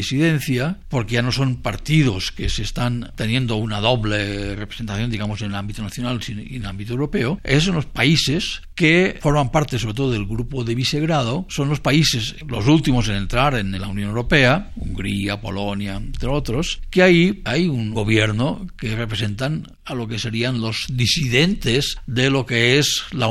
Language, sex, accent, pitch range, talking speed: Spanish, male, Spanish, 110-145 Hz, 175 wpm